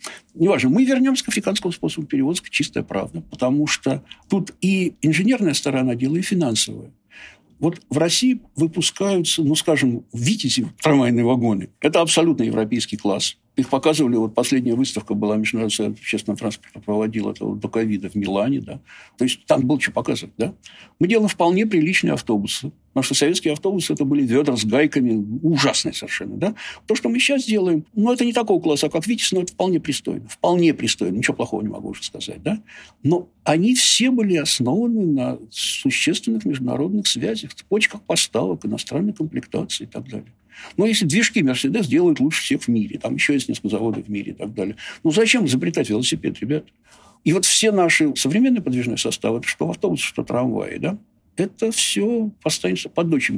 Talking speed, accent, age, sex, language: 180 wpm, native, 60-79, male, Russian